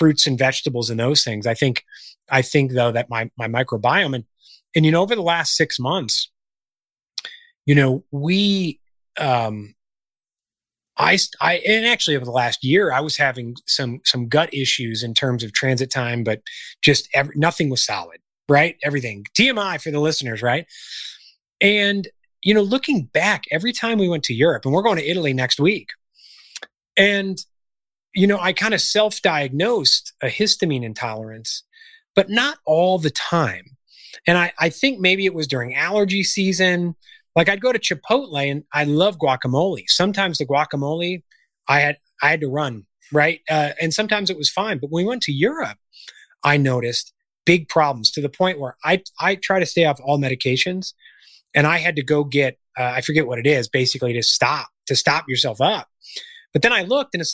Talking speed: 185 wpm